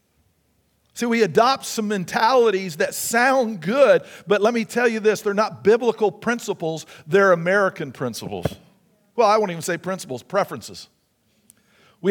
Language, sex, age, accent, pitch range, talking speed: English, male, 50-69, American, 190-245 Hz, 145 wpm